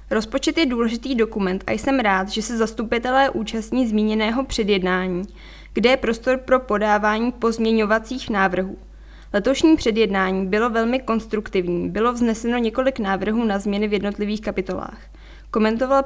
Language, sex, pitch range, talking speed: Czech, female, 205-235 Hz, 130 wpm